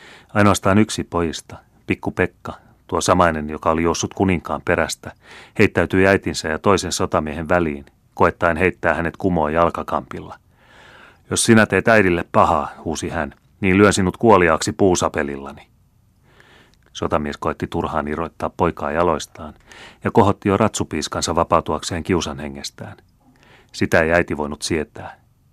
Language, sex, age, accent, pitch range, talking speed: Finnish, male, 30-49, native, 80-95 Hz, 125 wpm